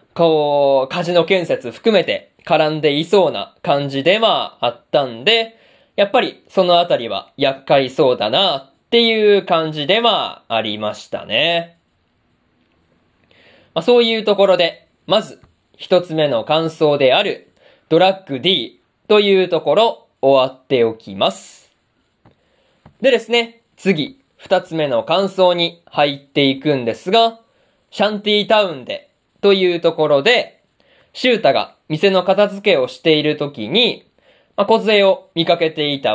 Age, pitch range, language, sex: 20-39, 140-200 Hz, Japanese, male